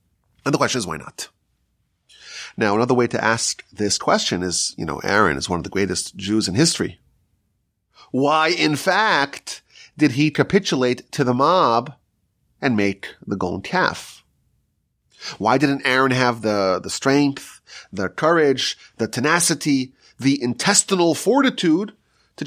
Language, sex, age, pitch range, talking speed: English, male, 30-49, 100-165 Hz, 145 wpm